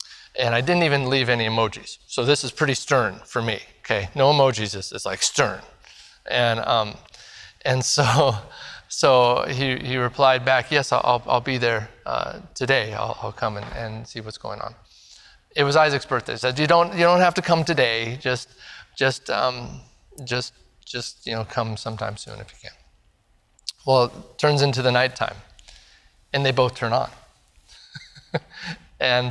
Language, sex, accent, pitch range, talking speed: English, male, American, 115-150 Hz, 170 wpm